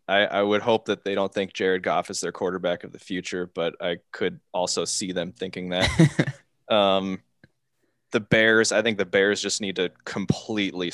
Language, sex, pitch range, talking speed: English, male, 90-105 Hz, 190 wpm